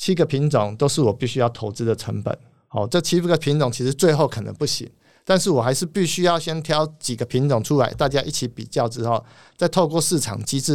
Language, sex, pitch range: Chinese, male, 120-160 Hz